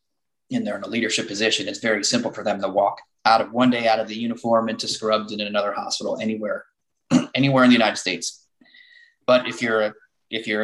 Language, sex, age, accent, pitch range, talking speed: English, male, 20-39, American, 100-115 Hz, 215 wpm